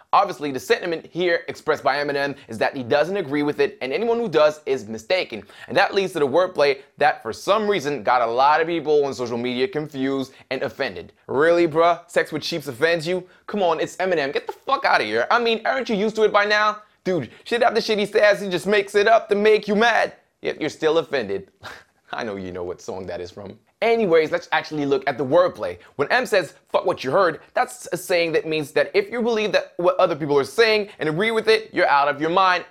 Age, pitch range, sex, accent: 20-39, 145-210 Hz, male, American